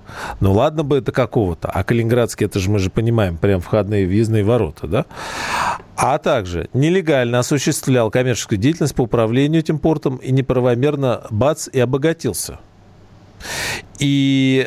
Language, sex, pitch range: Russian, male, 105-130 Hz